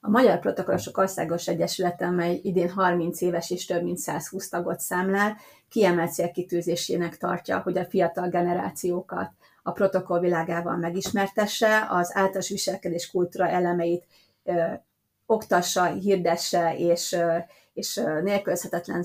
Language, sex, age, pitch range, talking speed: Hungarian, female, 30-49, 175-195 Hz, 120 wpm